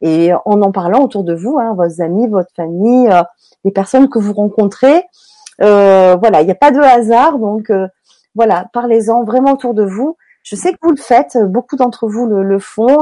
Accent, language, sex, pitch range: French, French, female, 200-250 Hz